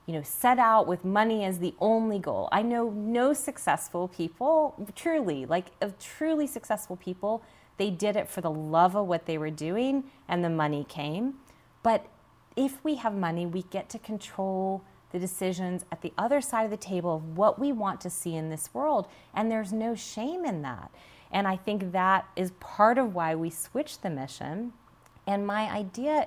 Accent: American